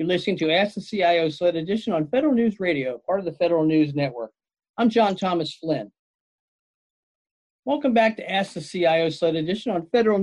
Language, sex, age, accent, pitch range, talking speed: English, male, 50-69, American, 155-200 Hz, 190 wpm